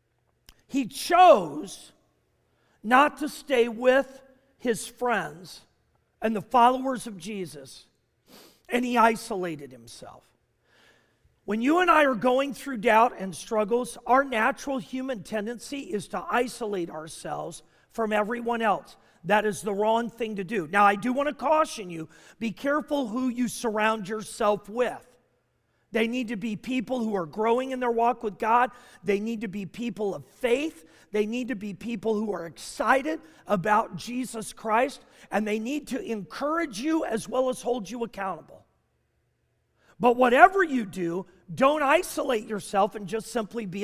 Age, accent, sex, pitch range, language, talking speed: 40-59, American, male, 210-280 Hz, English, 155 wpm